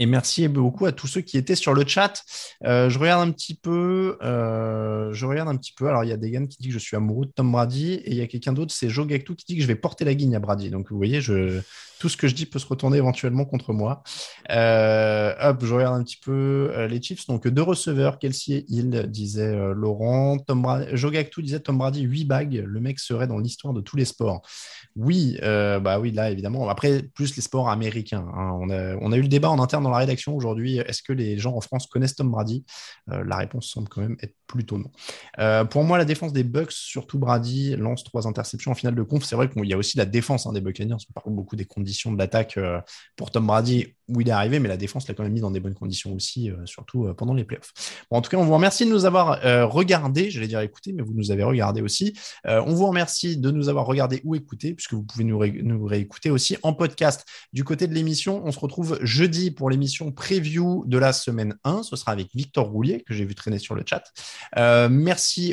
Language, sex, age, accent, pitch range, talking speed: French, male, 20-39, French, 110-145 Hz, 255 wpm